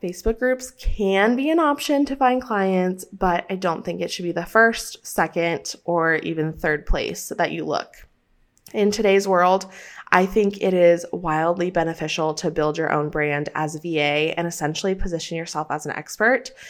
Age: 20-39